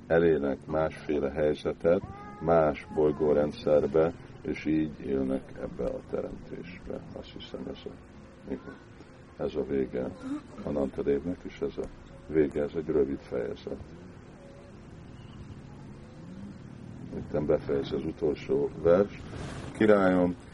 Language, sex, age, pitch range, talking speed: Hungarian, male, 50-69, 70-90 Hz, 95 wpm